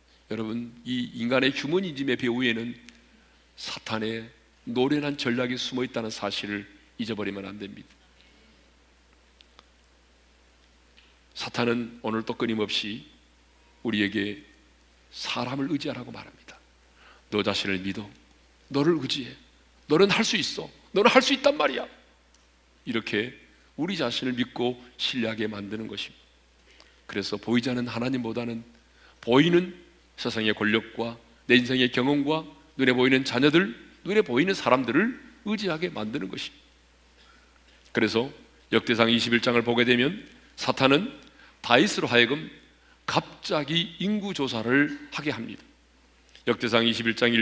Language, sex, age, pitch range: Korean, male, 40-59, 100-135 Hz